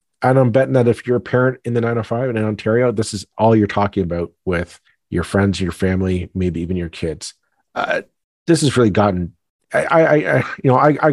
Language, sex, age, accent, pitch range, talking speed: English, male, 40-59, American, 90-110 Hz, 220 wpm